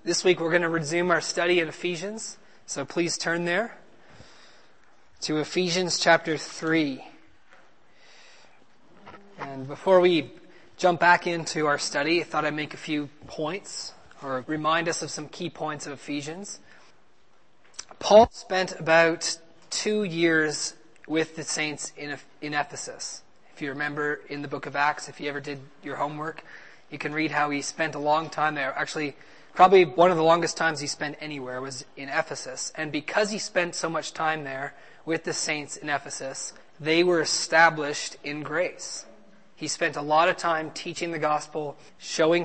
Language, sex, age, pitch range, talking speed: English, male, 20-39, 145-170 Hz, 165 wpm